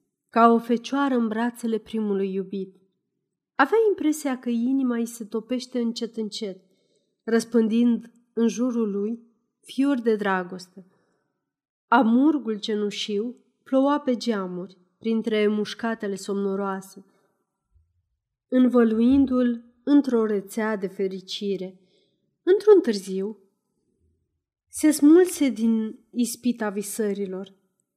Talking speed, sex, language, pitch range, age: 90 wpm, female, Romanian, 195-250 Hz, 30-49